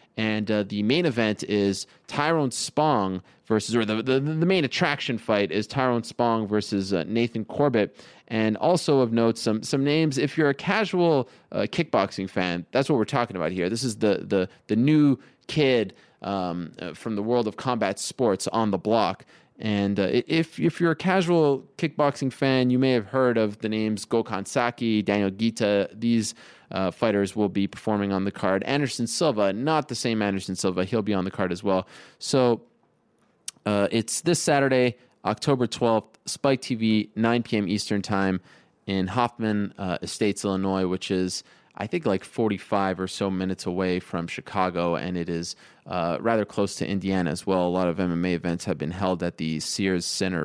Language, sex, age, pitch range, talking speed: English, male, 20-39, 95-125 Hz, 185 wpm